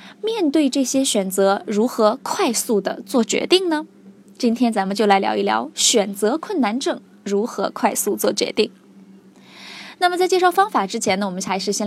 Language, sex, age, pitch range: Chinese, female, 20-39, 205-310 Hz